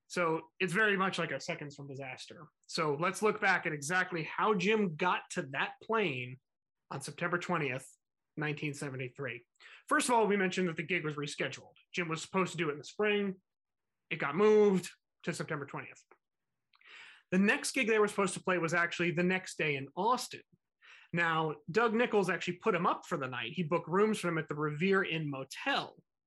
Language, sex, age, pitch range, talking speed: English, male, 30-49, 155-200 Hz, 195 wpm